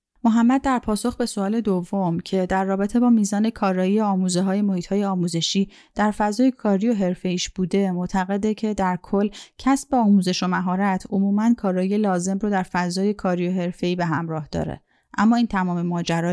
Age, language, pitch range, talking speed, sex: 30-49, Persian, 180-215 Hz, 175 wpm, female